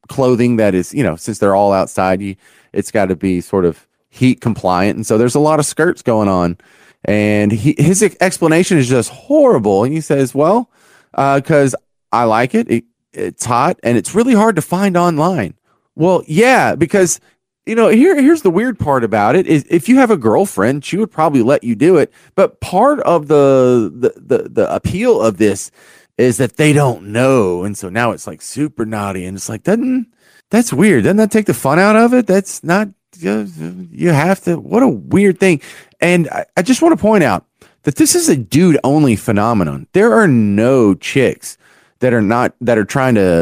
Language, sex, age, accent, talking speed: English, male, 30-49, American, 210 wpm